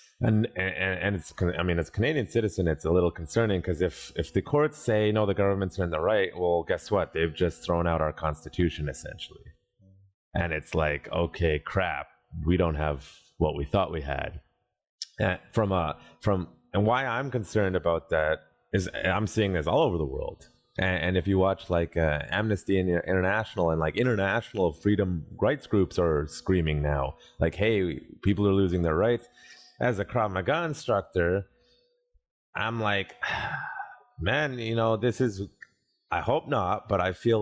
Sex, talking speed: male, 180 wpm